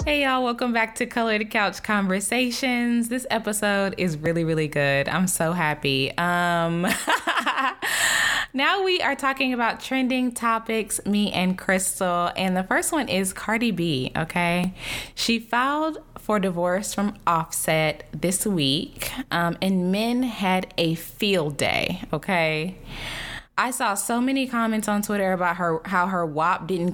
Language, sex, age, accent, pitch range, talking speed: English, female, 10-29, American, 160-230 Hz, 145 wpm